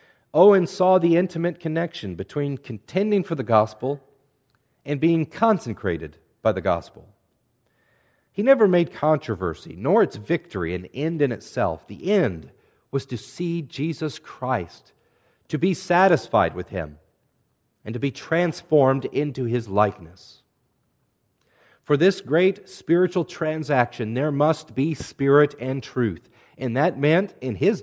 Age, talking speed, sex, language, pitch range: 40-59, 135 wpm, male, English, 105-150 Hz